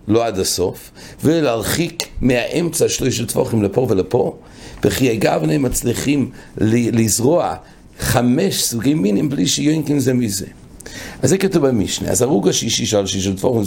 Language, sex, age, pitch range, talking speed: English, male, 60-79, 100-130 Hz, 145 wpm